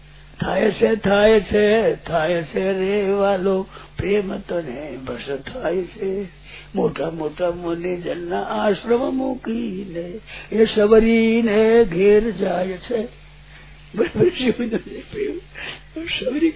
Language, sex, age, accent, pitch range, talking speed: Hindi, male, 50-69, native, 200-265 Hz, 95 wpm